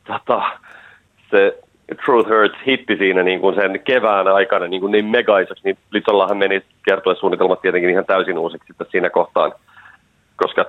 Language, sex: Finnish, male